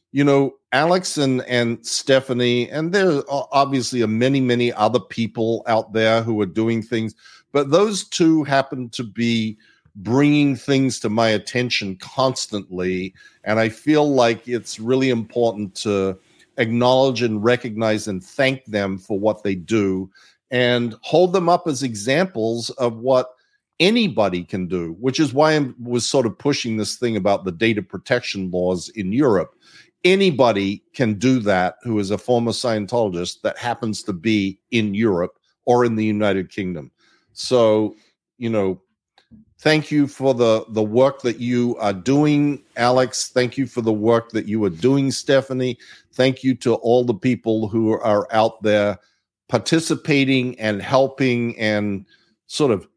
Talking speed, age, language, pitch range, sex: 155 wpm, 50-69, English, 110-135 Hz, male